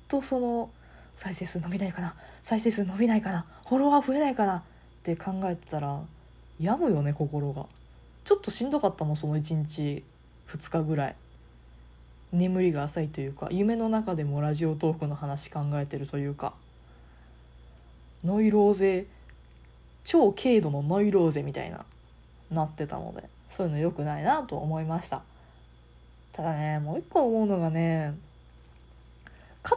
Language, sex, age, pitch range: Japanese, female, 20-39, 135-205 Hz